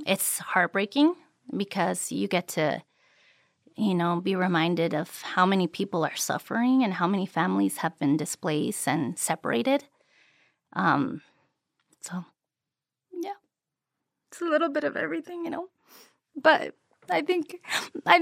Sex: female